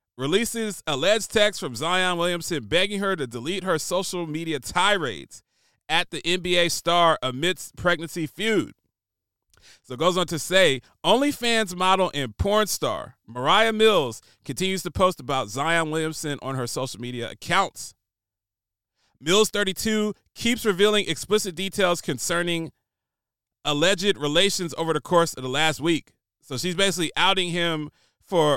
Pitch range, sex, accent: 145-200 Hz, male, American